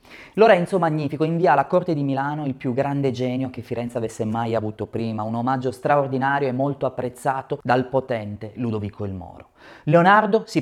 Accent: native